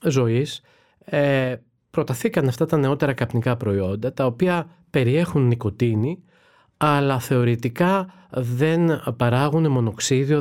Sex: male